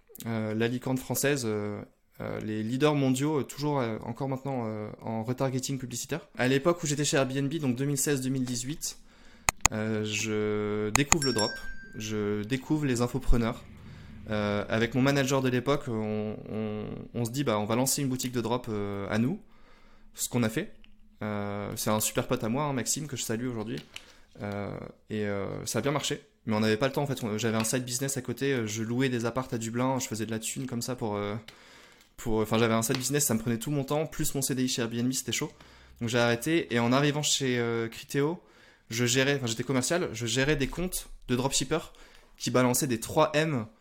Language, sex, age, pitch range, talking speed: French, male, 20-39, 110-135 Hz, 210 wpm